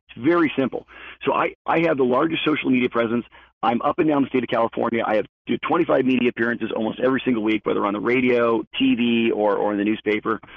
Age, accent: 40-59, American